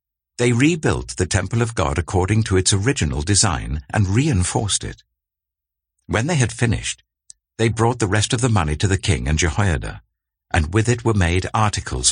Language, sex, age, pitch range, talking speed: English, male, 60-79, 70-110 Hz, 180 wpm